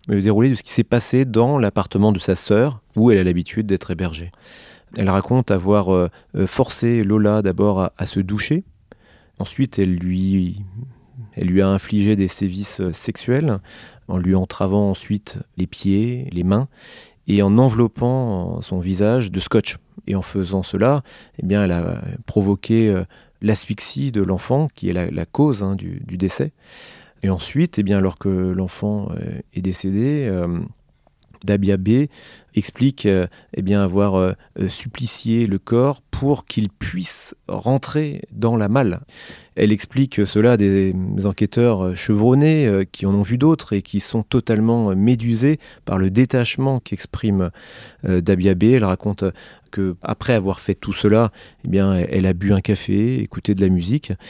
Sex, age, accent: male, 30-49, French